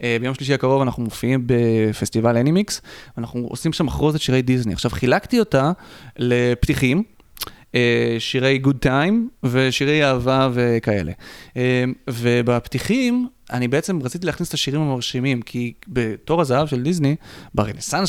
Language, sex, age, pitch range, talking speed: Hebrew, male, 30-49, 120-140 Hz, 125 wpm